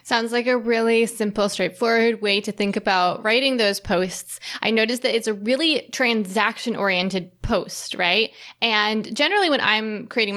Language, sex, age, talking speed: English, female, 20-39, 155 wpm